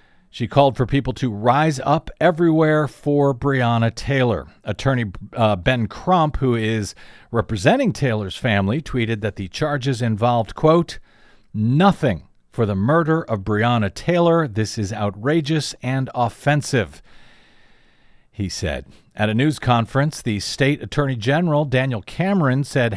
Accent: American